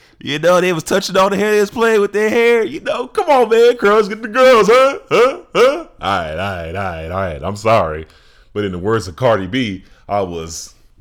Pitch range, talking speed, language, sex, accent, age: 80-120 Hz, 245 wpm, English, male, American, 20-39